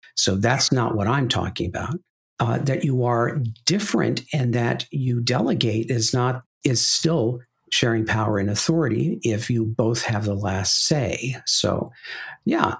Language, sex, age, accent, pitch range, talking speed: English, male, 50-69, American, 105-130 Hz, 155 wpm